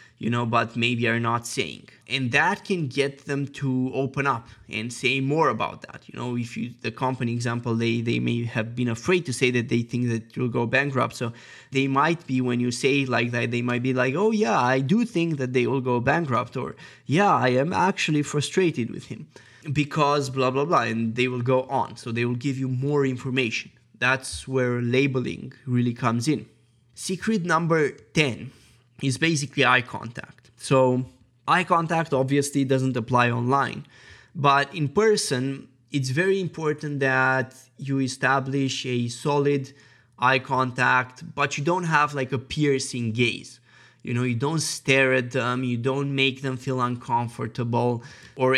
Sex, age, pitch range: male, 20-39, 120-140 Hz